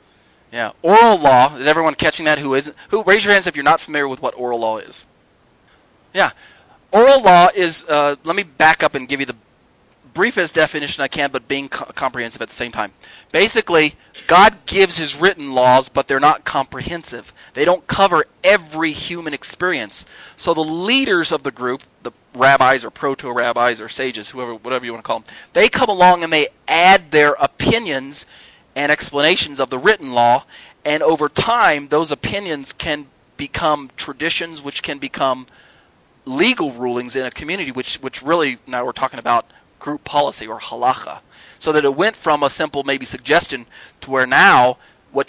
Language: English